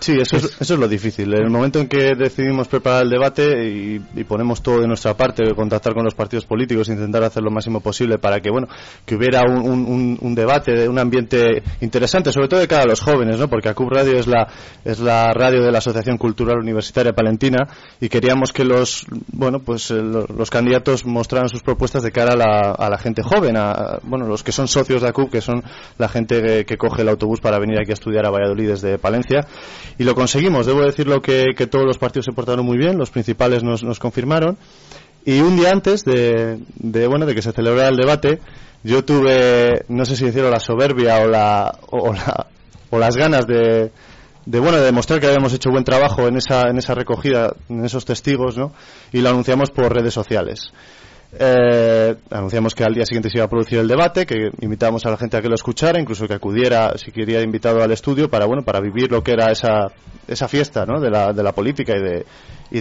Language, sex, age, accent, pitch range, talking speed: Spanish, male, 20-39, Spanish, 110-130 Hz, 225 wpm